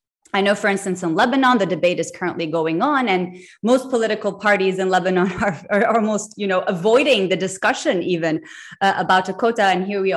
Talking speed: 200 wpm